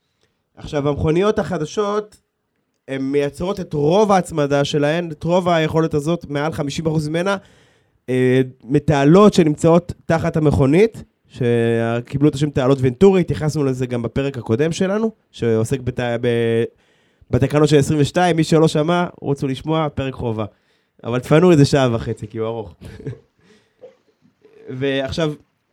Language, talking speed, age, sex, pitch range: Hebrew, 125 wpm, 20-39, male, 130-170 Hz